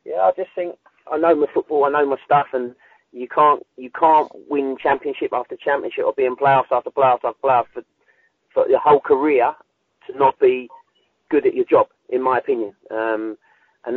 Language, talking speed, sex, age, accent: English, 200 wpm, male, 30-49, British